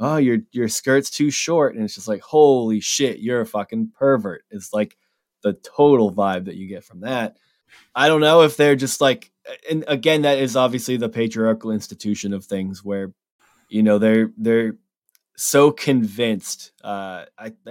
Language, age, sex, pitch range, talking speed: English, 20-39, male, 110-135 Hz, 175 wpm